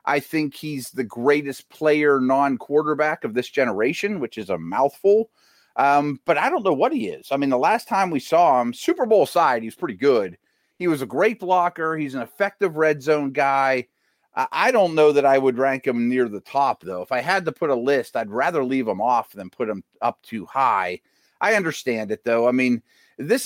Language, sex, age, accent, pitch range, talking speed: English, male, 30-49, American, 125-160 Hz, 215 wpm